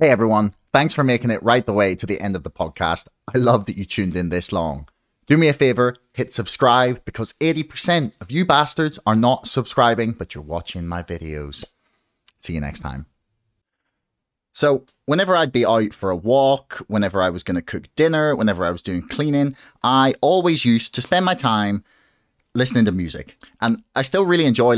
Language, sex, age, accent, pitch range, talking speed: English, male, 30-49, British, 100-135 Hz, 195 wpm